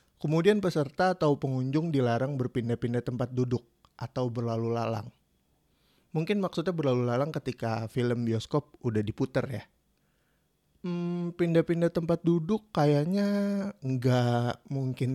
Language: Indonesian